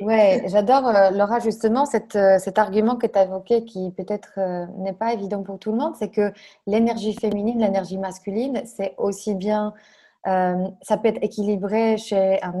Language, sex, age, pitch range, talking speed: French, female, 20-39, 190-225 Hz, 170 wpm